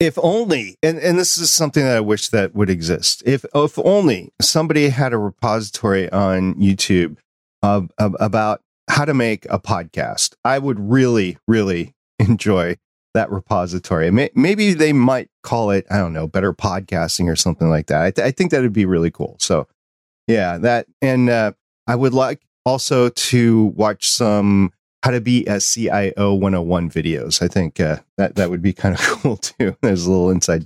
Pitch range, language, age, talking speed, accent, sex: 100-140 Hz, English, 40-59, 180 wpm, American, male